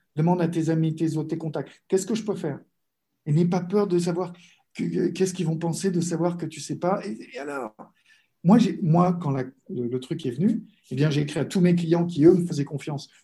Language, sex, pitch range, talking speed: French, male, 140-180 Hz, 265 wpm